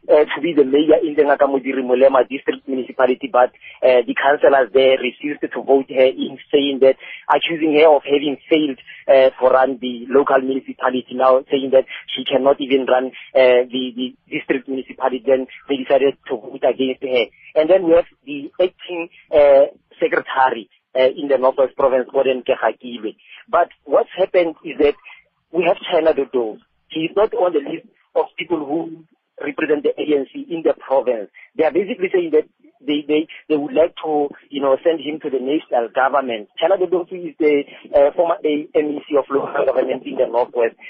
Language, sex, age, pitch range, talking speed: English, male, 40-59, 135-165 Hz, 180 wpm